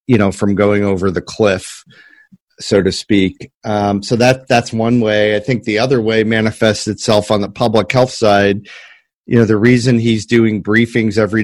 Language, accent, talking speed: English, American, 190 wpm